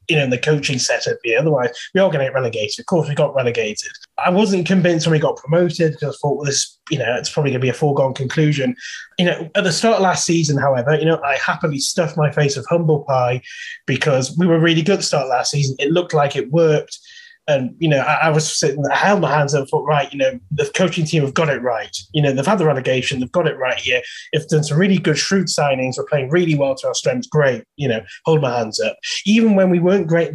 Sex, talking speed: male, 270 wpm